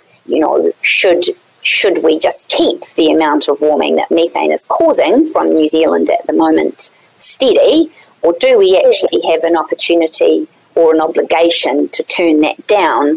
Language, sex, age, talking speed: English, female, 30-49, 165 wpm